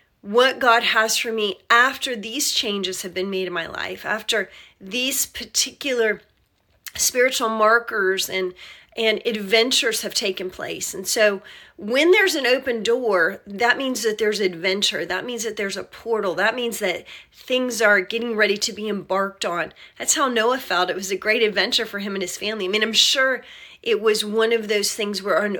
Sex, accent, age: female, American, 30-49